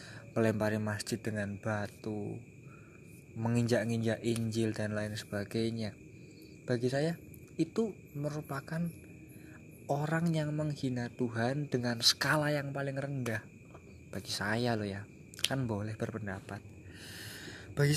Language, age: Indonesian, 20-39